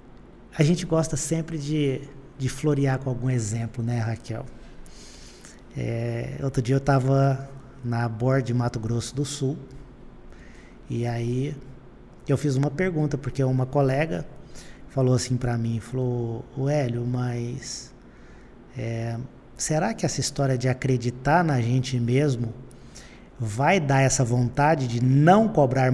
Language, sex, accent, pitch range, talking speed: Portuguese, male, Brazilian, 120-145 Hz, 135 wpm